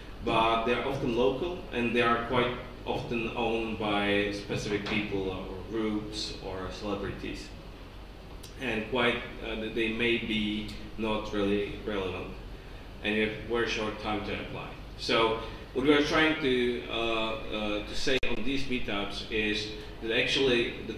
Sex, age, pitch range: male, 30-49, 100-120 Hz